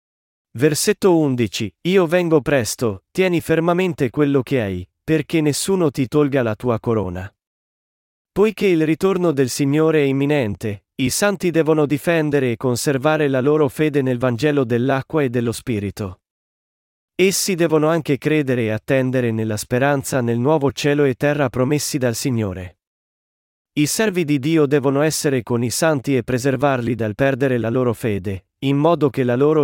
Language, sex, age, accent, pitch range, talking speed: Italian, male, 40-59, native, 120-155 Hz, 155 wpm